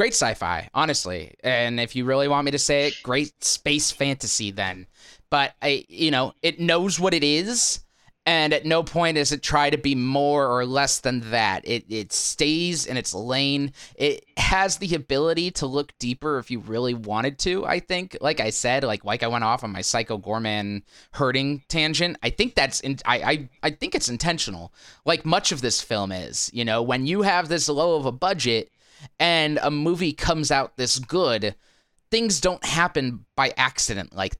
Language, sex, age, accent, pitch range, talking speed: English, male, 20-39, American, 120-155 Hz, 195 wpm